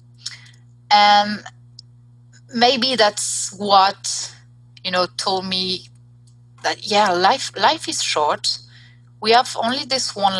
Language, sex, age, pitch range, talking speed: English, female, 30-49, 120-200 Hz, 110 wpm